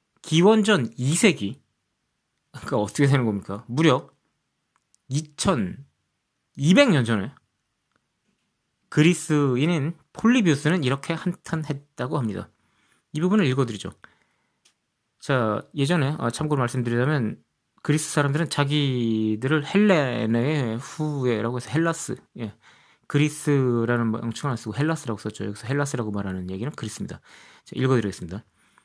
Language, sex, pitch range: Korean, male, 115-160 Hz